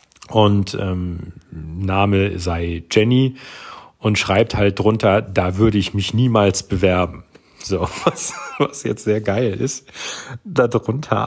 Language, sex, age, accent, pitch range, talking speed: German, male, 40-59, German, 100-135 Hz, 120 wpm